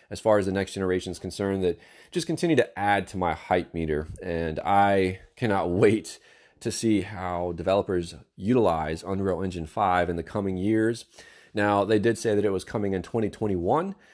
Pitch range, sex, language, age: 85-105 Hz, male, English, 30-49